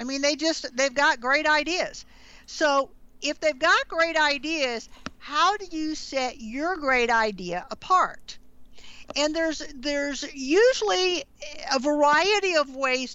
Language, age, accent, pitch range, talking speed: English, 50-69, American, 225-295 Hz, 135 wpm